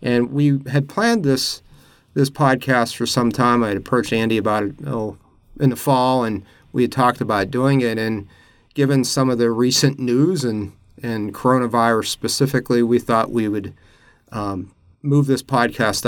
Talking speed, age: 175 wpm, 40-59